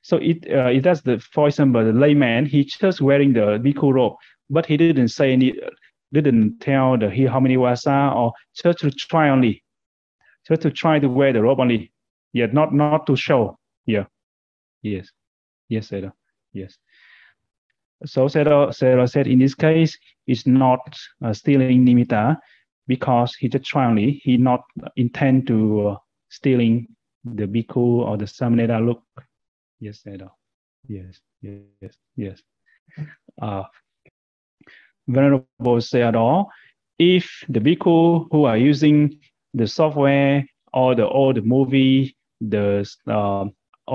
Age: 30-49